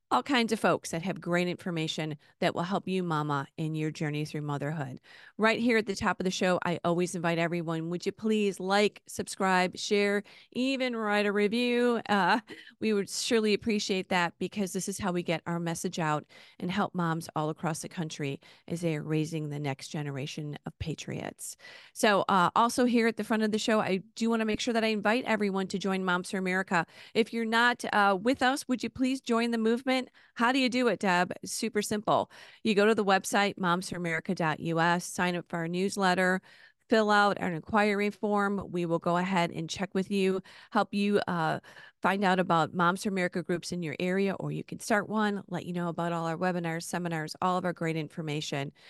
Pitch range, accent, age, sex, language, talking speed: 170-210 Hz, American, 40-59, female, English, 210 wpm